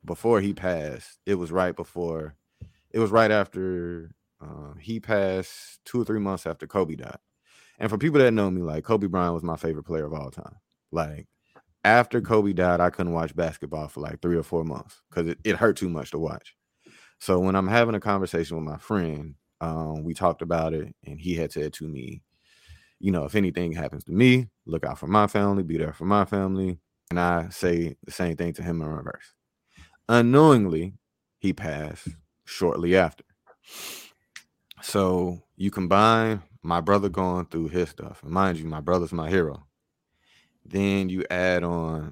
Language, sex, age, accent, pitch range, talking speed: English, male, 30-49, American, 80-100 Hz, 185 wpm